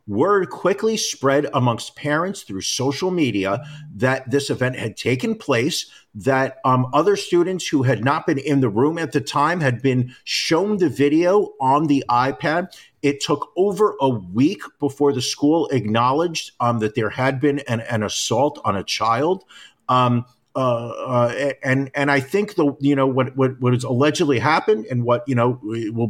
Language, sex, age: English, male, 50-69